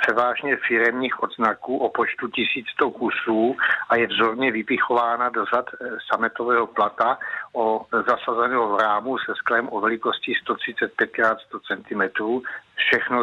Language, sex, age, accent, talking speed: Czech, male, 60-79, native, 115 wpm